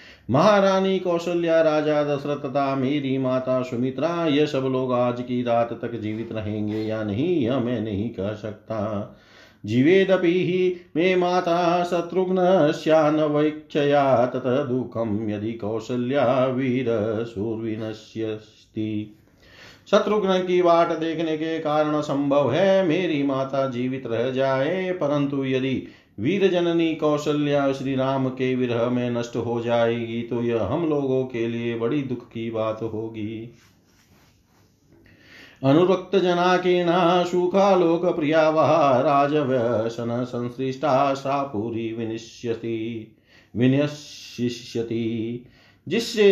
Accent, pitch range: native, 115-155 Hz